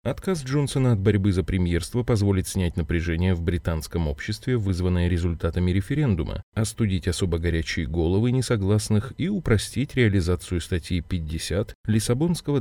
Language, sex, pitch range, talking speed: Russian, male, 90-115 Hz, 125 wpm